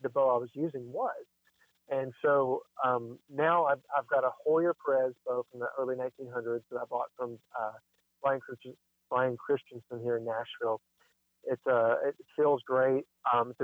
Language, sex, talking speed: English, male, 175 wpm